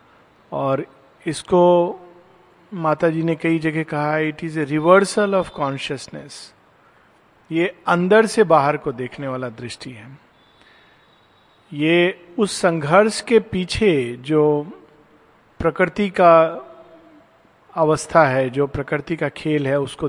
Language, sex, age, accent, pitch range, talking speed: Hindi, male, 50-69, native, 145-180 Hz, 115 wpm